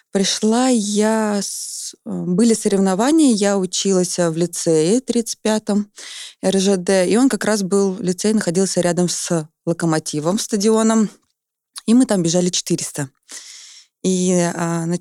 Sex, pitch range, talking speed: female, 170-215 Hz, 110 wpm